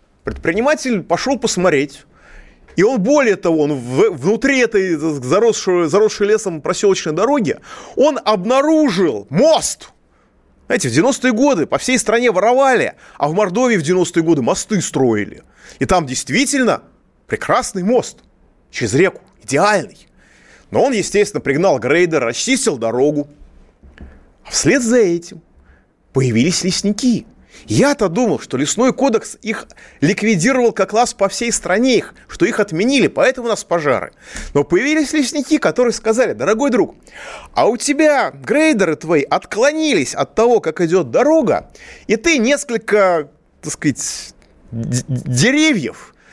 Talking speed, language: 125 wpm, Russian